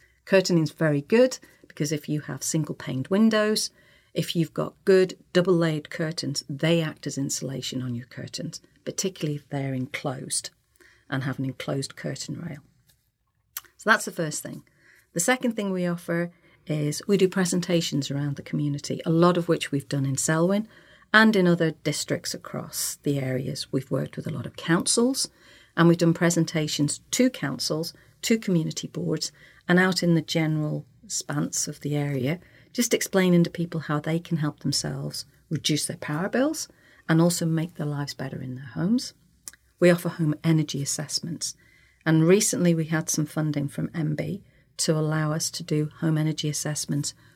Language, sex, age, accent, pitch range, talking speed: English, female, 50-69, British, 145-175 Hz, 170 wpm